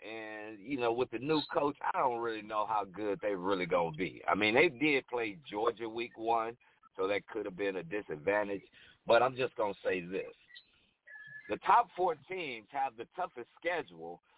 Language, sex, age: English, male, 50-69